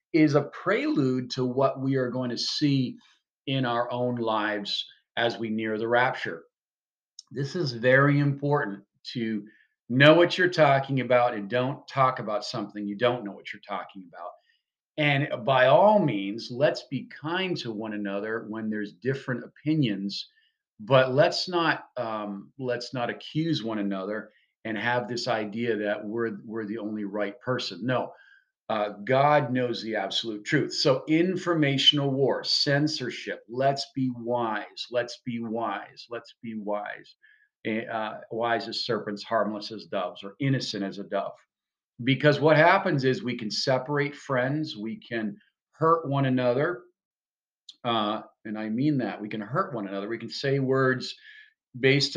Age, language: 40-59, English